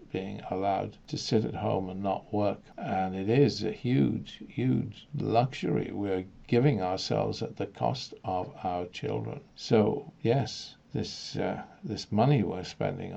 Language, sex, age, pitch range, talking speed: English, male, 60-79, 100-140 Hz, 150 wpm